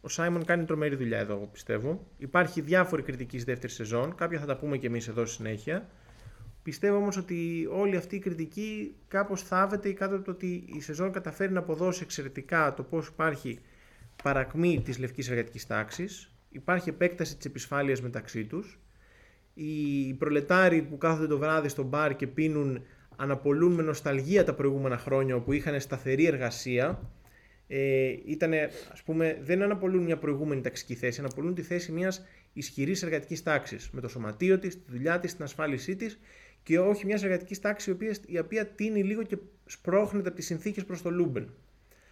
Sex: male